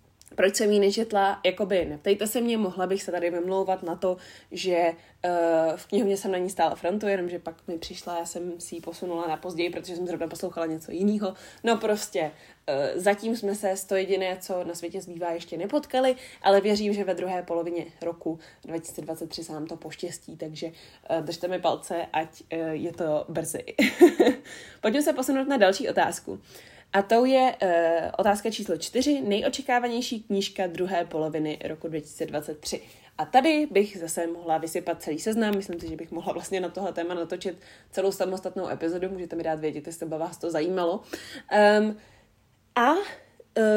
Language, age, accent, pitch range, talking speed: Czech, 20-39, native, 170-205 Hz, 180 wpm